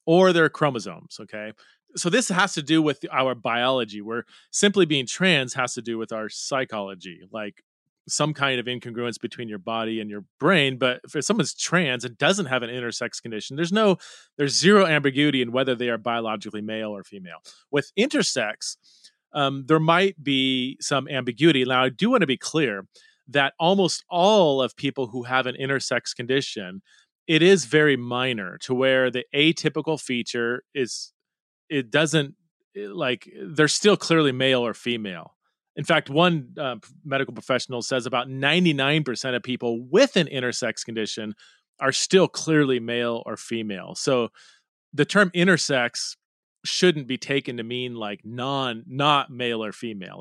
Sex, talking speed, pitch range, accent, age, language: male, 165 wpm, 120-155 Hz, American, 30-49, English